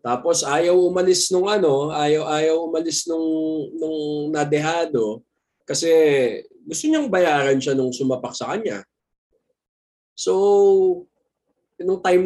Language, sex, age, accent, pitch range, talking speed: Filipino, male, 20-39, native, 130-180 Hz, 115 wpm